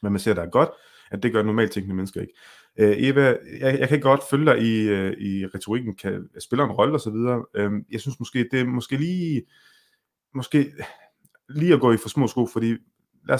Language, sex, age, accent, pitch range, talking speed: Danish, male, 30-49, native, 100-130 Hz, 220 wpm